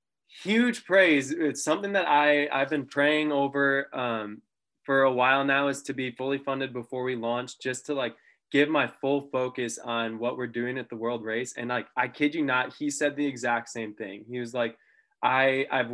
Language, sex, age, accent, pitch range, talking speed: English, male, 20-39, American, 120-145 Hz, 205 wpm